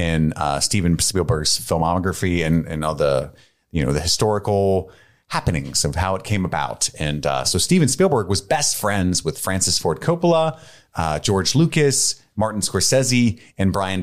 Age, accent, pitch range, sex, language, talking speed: 30-49, American, 85-120 Hz, male, English, 165 wpm